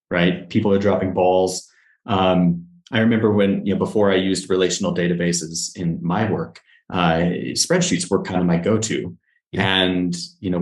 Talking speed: 165 wpm